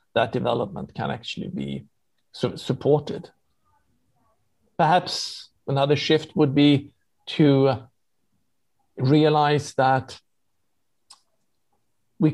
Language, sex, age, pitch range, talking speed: English, male, 50-69, 125-150 Hz, 75 wpm